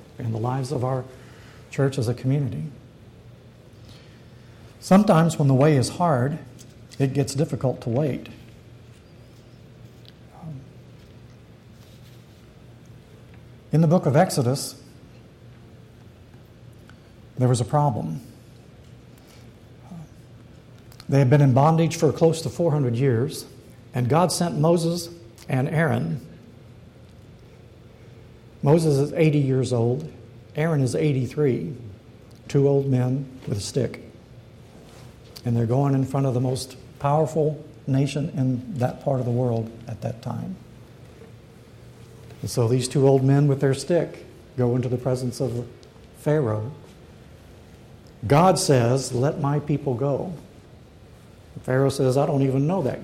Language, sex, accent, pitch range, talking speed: English, male, American, 120-140 Hz, 120 wpm